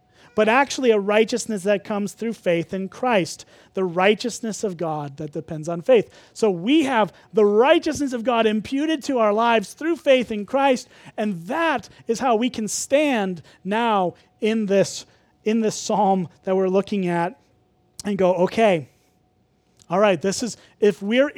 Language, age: English, 30-49